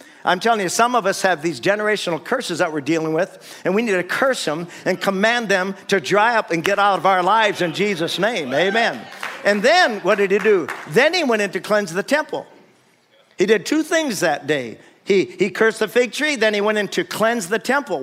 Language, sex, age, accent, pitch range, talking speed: English, male, 50-69, American, 150-210 Hz, 235 wpm